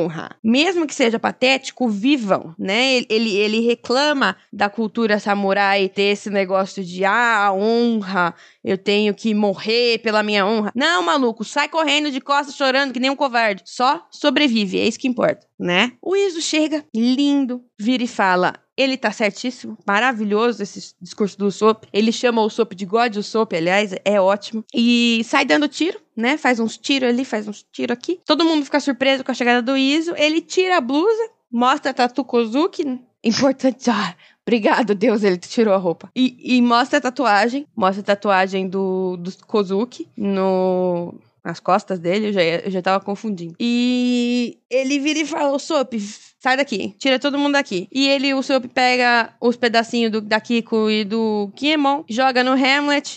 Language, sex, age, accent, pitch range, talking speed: Portuguese, female, 20-39, Brazilian, 210-280 Hz, 175 wpm